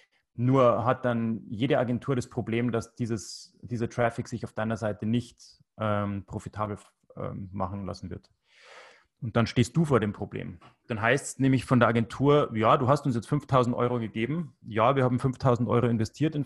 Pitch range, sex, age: 110-125 Hz, male, 30-49